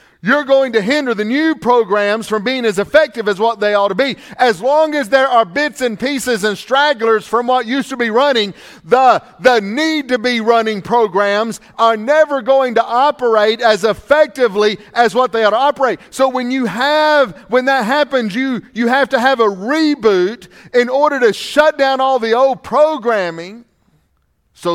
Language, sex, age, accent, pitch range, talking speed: English, male, 40-59, American, 230-280 Hz, 180 wpm